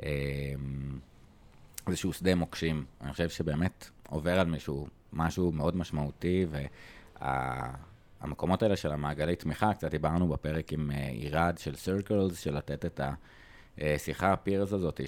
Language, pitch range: Hebrew, 70-90 Hz